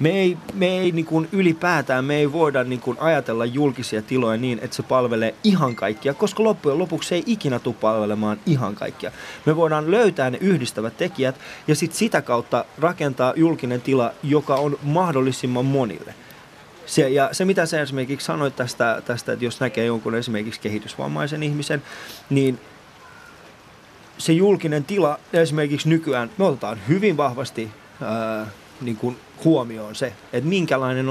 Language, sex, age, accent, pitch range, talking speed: Finnish, male, 20-39, native, 120-155 Hz, 150 wpm